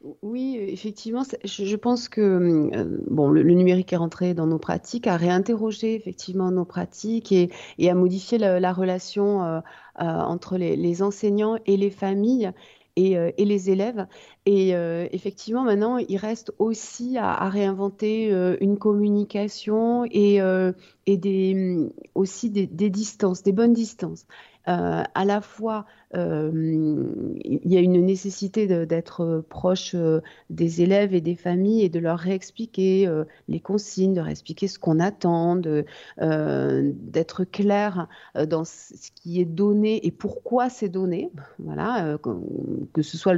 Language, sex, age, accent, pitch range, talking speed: French, female, 30-49, French, 170-205 Hz, 155 wpm